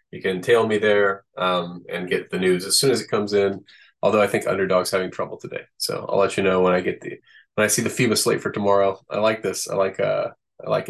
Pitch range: 95-110 Hz